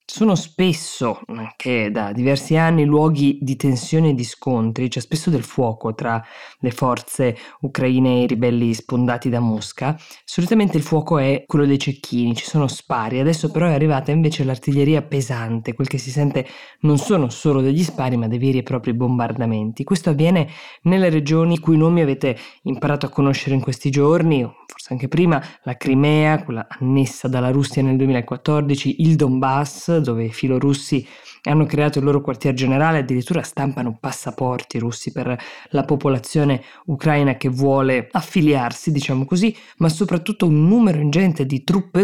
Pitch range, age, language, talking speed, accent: 130-155 Hz, 20-39, Italian, 165 wpm, native